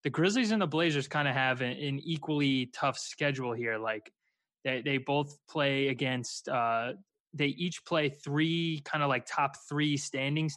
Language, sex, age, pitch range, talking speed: English, male, 20-39, 130-150 Hz, 175 wpm